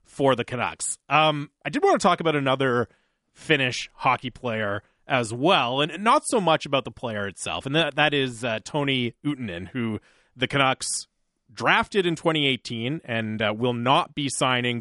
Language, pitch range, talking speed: English, 115-145 Hz, 175 wpm